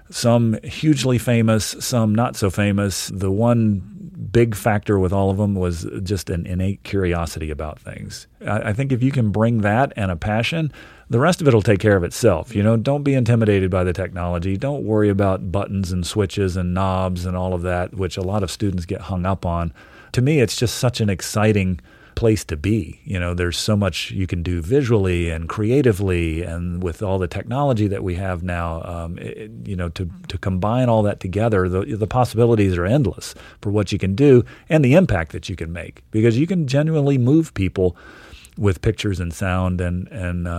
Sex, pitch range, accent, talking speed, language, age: male, 90-110 Hz, American, 205 wpm, English, 40-59